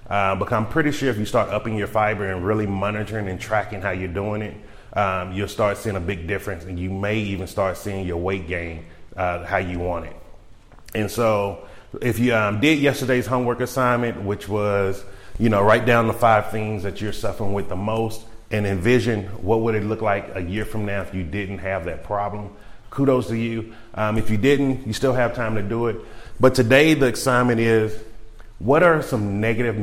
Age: 30-49